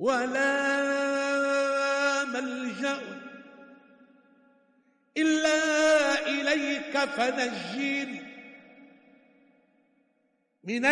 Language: Arabic